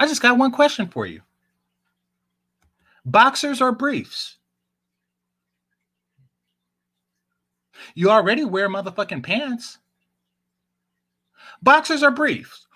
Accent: American